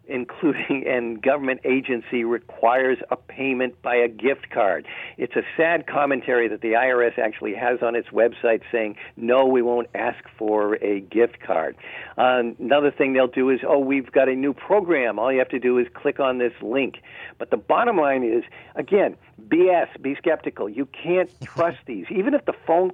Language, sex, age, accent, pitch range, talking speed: English, male, 50-69, American, 115-140 Hz, 185 wpm